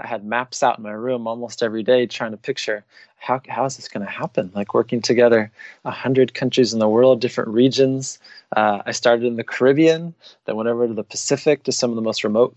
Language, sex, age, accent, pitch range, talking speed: English, male, 20-39, American, 115-135 Hz, 235 wpm